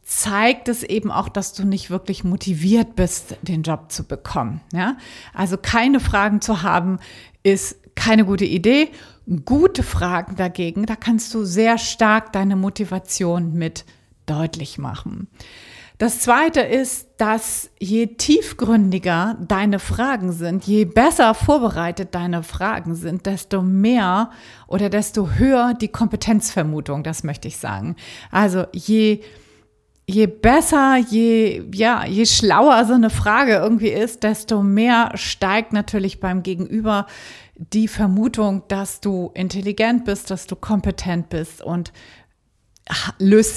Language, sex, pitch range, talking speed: German, female, 185-225 Hz, 130 wpm